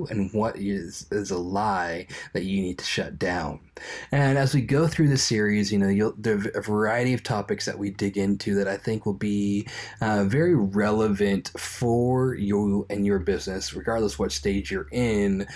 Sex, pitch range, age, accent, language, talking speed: male, 100-125 Hz, 20-39, American, English, 195 wpm